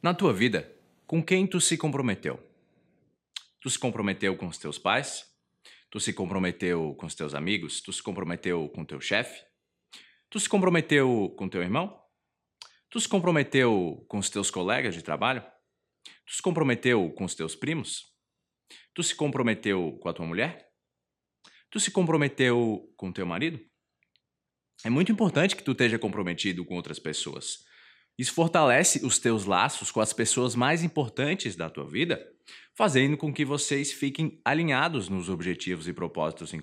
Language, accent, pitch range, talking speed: Portuguese, Brazilian, 100-155 Hz, 165 wpm